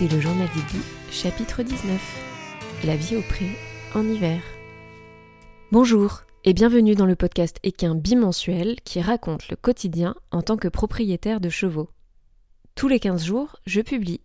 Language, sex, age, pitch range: French, female, 20-39, 175-215 Hz